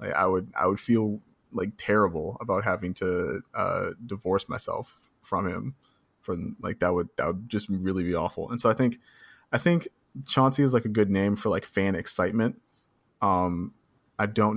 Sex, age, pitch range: male, 20-39, 95-115 Hz